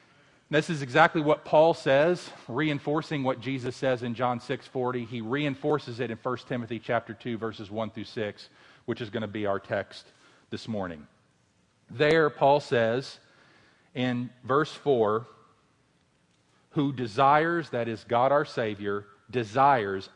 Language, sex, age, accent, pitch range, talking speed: English, male, 40-59, American, 110-140 Hz, 145 wpm